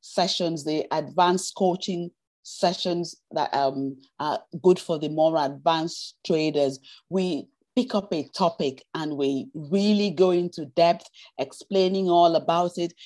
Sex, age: female, 40-59